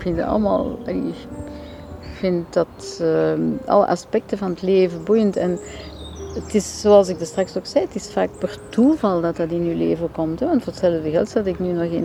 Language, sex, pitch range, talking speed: Dutch, female, 165-190 Hz, 210 wpm